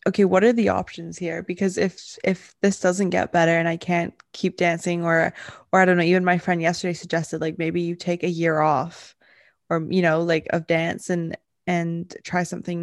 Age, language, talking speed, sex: 20-39, English, 210 wpm, female